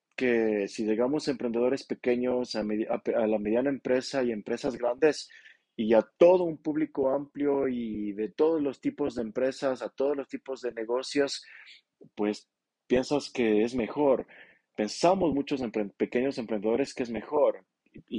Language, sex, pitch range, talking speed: Spanish, male, 115-150 Hz, 165 wpm